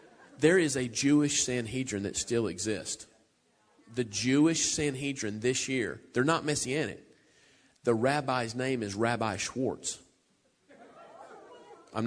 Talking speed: 115 wpm